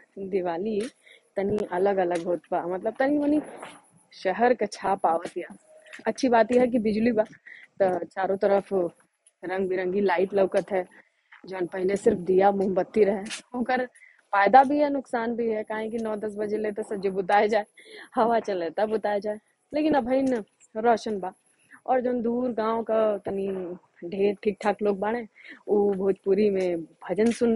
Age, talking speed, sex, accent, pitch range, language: 20-39, 160 wpm, female, native, 195-255 Hz, Hindi